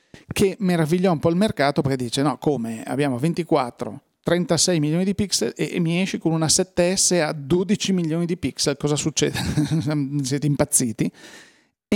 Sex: male